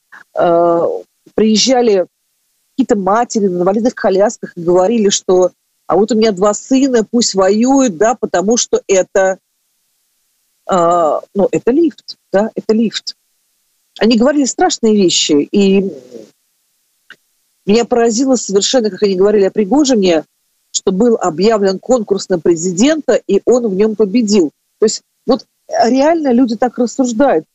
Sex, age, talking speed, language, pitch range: female, 50-69, 130 wpm, Ukrainian, 190-245 Hz